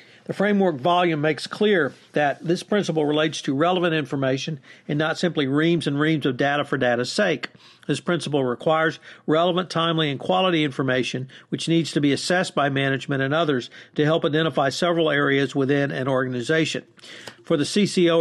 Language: English